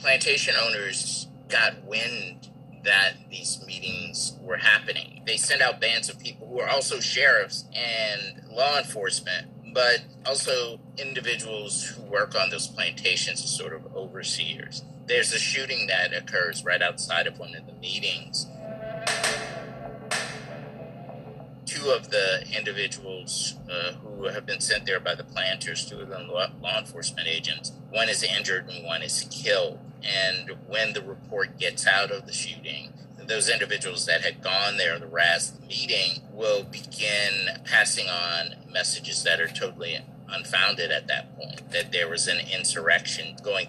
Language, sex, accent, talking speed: English, male, American, 150 wpm